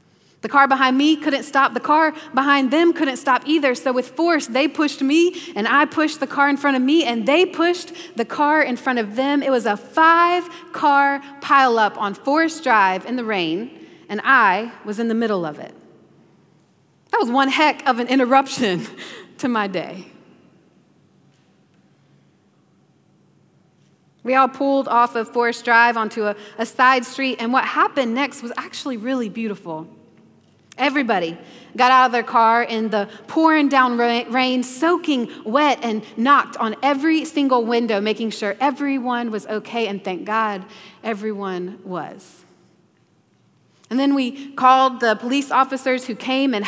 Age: 30-49